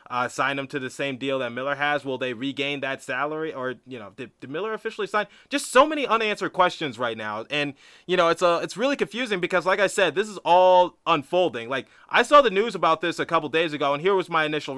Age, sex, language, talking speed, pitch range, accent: 20-39, male, English, 250 wpm, 130-160 Hz, American